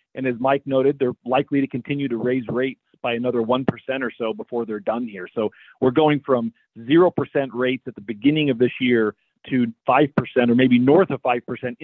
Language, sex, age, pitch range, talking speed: English, male, 40-59, 120-145 Hz, 200 wpm